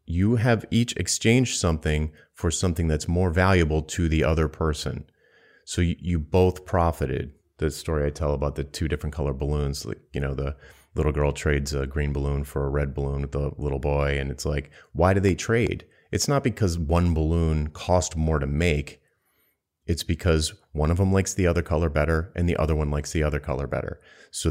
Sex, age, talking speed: male, 30-49, 205 wpm